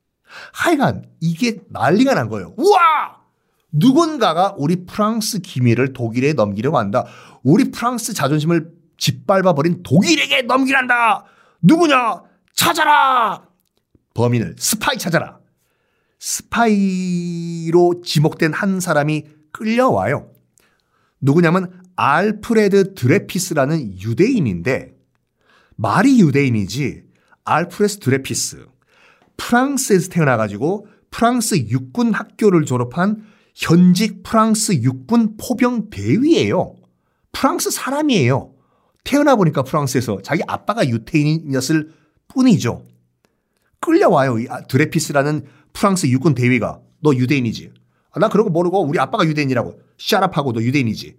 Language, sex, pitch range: Korean, male, 140-220 Hz